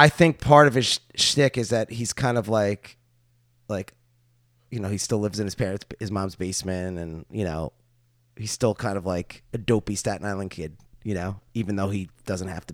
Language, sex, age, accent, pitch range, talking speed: English, male, 20-39, American, 95-125 Hz, 210 wpm